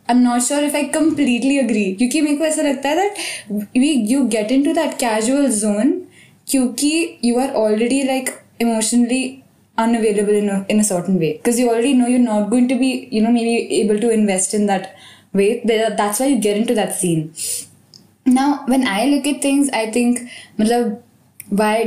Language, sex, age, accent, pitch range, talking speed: Hindi, female, 10-29, native, 225-275 Hz, 190 wpm